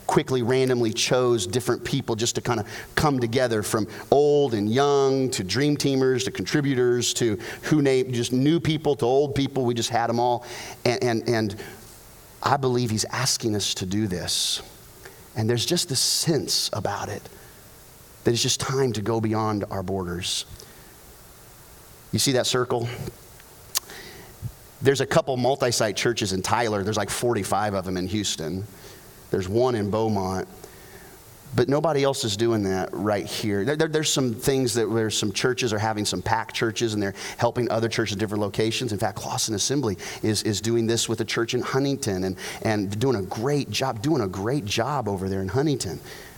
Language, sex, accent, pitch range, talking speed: English, male, American, 105-130 Hz, 180 wpm